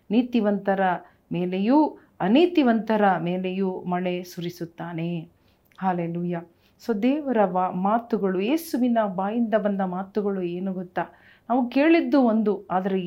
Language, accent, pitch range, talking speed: Kannada, native, 185-230 Hz, 95 wpm